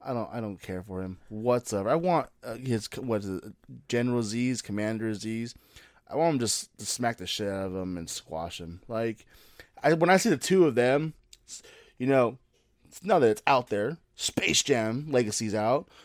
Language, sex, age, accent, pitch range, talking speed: English, male, 20-39, American, 110-150 Hz, 205 wpm